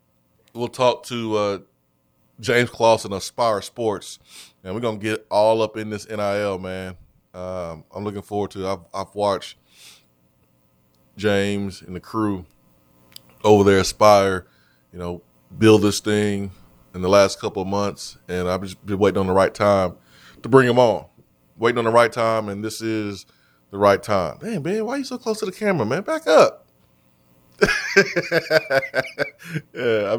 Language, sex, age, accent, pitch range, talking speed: English, male, 20-39, American, 90-110 Hz, 170 wpm